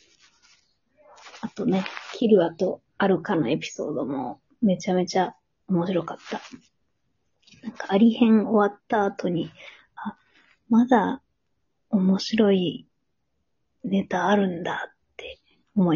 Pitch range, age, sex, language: 205-265 Hz, 20-39, female, Japanese